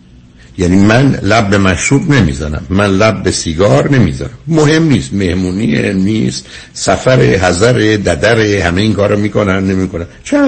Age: 60-79